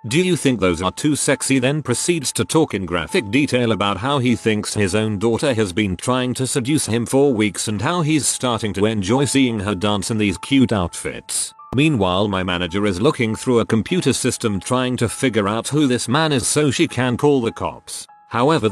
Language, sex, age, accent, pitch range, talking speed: English, male, 40-59, British, 105-135 Hz, 210 wpm